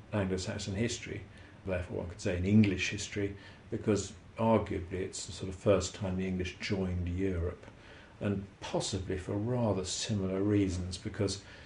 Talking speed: 150 wpm